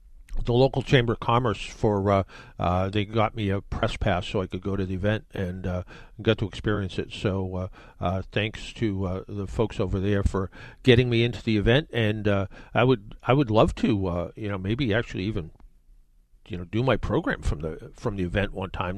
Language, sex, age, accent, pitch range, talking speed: English, male, 50-69, American, 100-135 Hz, 220 wpm